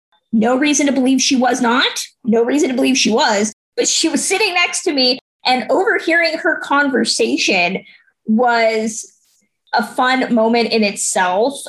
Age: 20-39